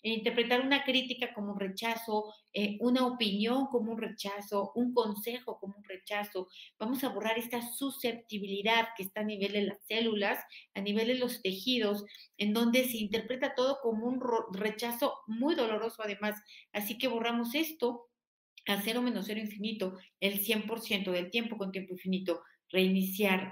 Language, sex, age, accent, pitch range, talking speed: Spanish, female, 40-59, Mexican, 205-250 Hz, 160 wpm